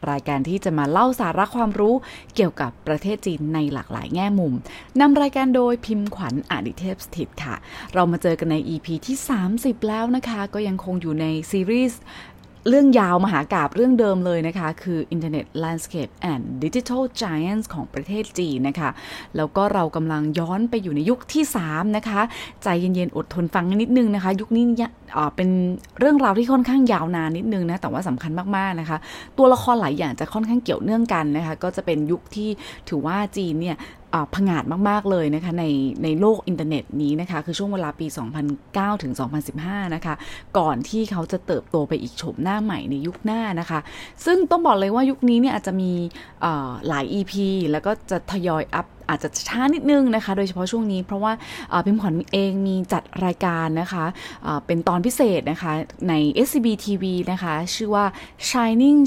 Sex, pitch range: female, 160-215 Hz